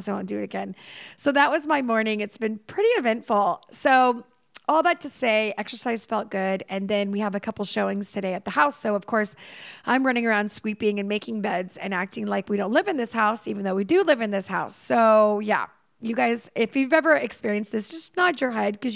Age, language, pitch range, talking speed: 30-49, English, 205-255 Hz, 235 wpm